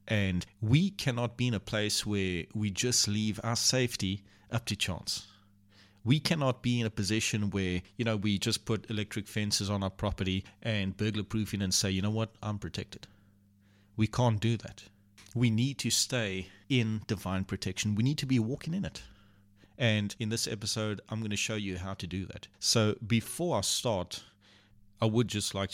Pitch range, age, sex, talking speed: 95-110 Hz, 30-49, male, 190 wpm